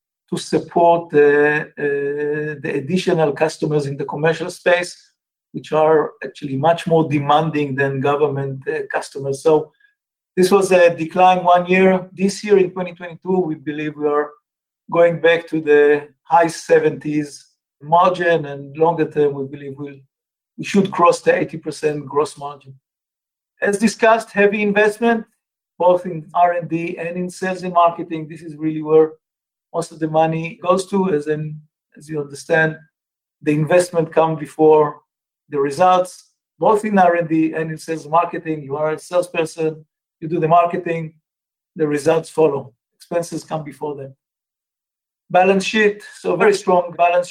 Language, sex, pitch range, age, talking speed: English, male, 150-180 Hz, 50-69, 145 wpm